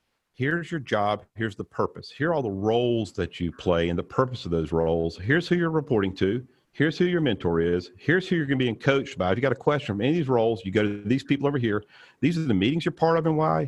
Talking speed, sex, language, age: 280 wpm, male, English, 50-69